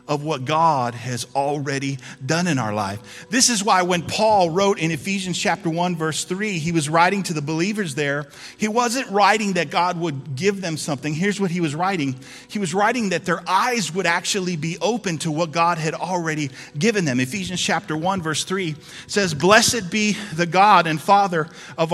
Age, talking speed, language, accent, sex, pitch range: 40-59, 195 wpm, English, American, male, 160-210 Hz